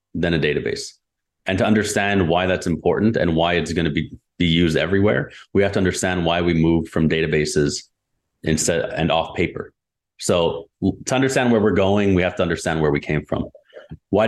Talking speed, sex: 200 wpm, male